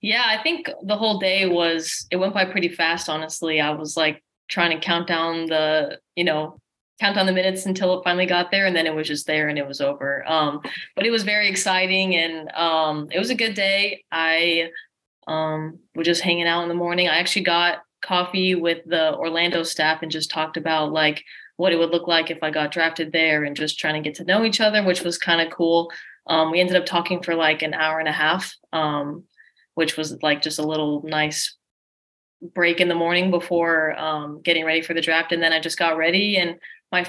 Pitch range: 155-180 Hz